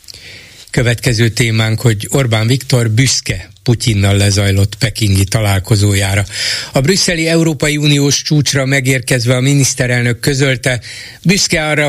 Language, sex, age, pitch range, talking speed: Hungarian, male, 60-79, 105-130 Hz, 105 wpm